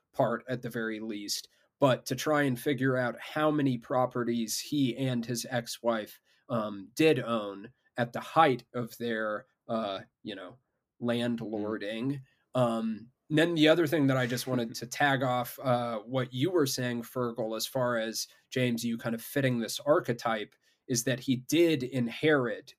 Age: 20-39